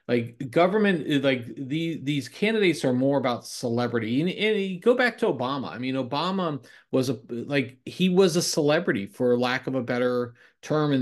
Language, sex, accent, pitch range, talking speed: English, male, American, 120-150 Hz, 185 wpm